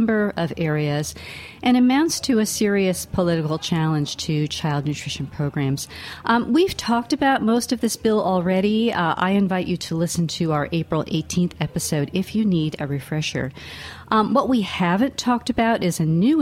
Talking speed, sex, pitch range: 170 wpm, female, 155-205 Hz